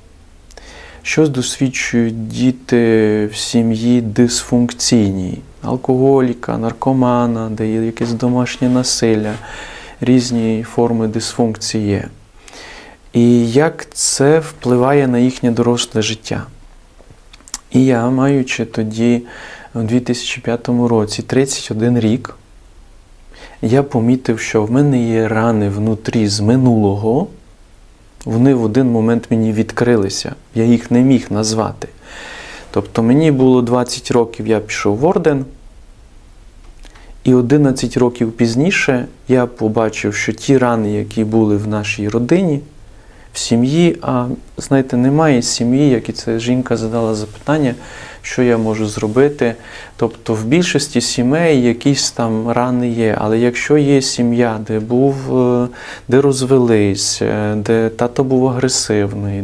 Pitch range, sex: 110-125 Hz, male